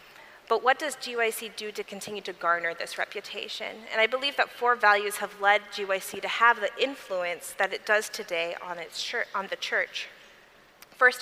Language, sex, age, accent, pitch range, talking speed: English, female, 30-49, American, 195-235 Hz, 185 wpm